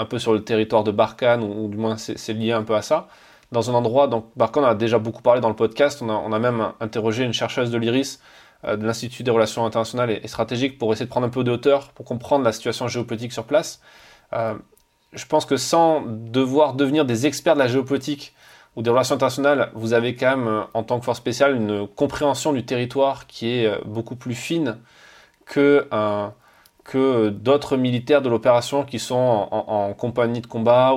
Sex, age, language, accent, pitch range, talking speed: male, 20-39, French, French, 110-135 Hz, 215 wpm